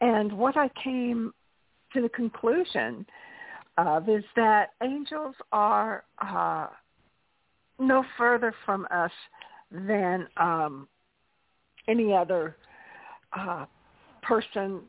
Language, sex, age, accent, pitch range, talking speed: English, female, 60-79, American, 185-235 Hz, 95 wpm